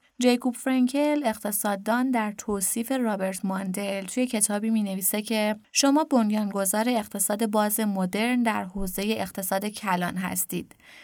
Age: 20-39